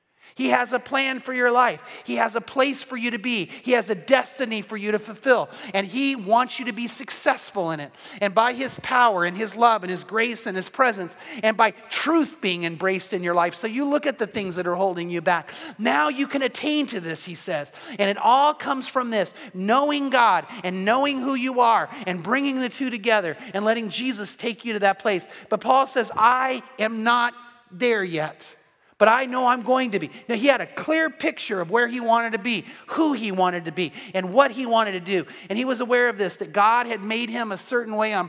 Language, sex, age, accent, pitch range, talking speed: English, male, 30-49, American, 190-250 Hz, 235 wpm